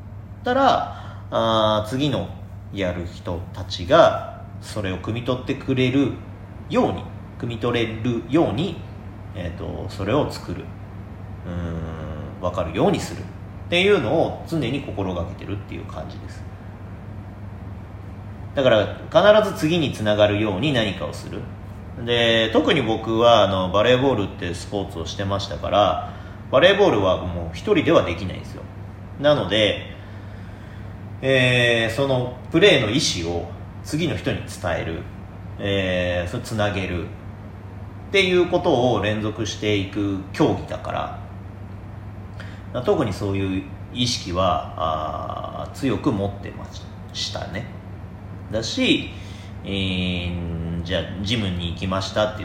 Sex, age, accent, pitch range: male, 40-59, native, 95-105 Hz